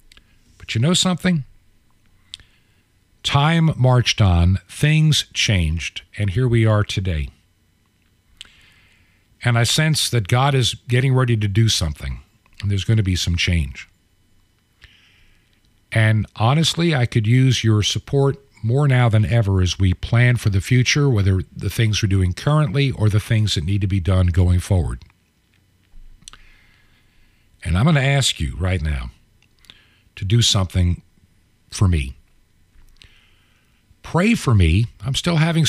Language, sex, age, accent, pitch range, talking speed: English, male, 50-69, American, 90-115 Hz, 140 wpm